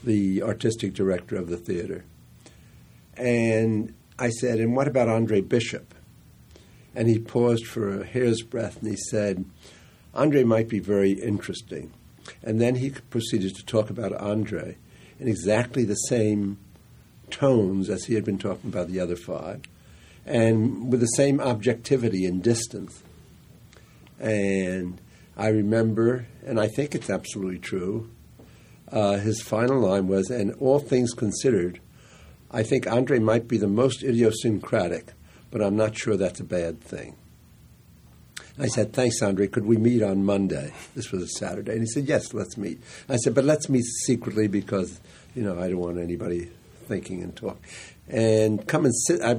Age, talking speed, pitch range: 60-79, 160 wpm, 95-120 Hz